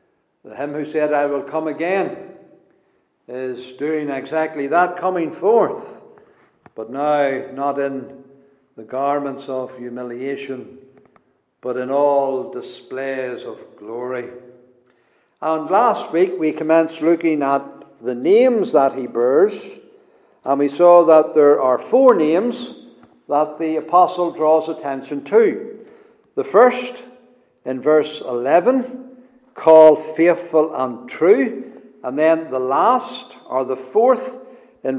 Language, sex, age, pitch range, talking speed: English, male, 60-79, 135-220 Hz, 120 wpm